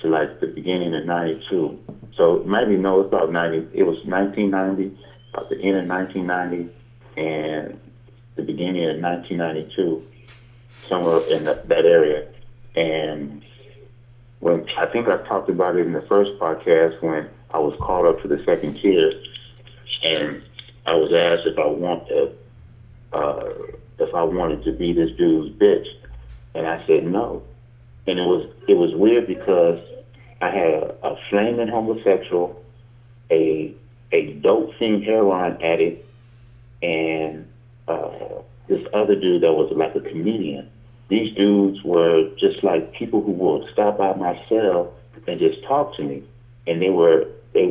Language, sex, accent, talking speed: English, male, American, 155 wpm